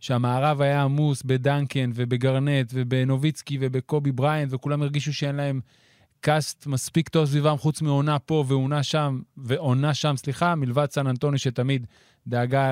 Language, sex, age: Hebrew, male, 30-49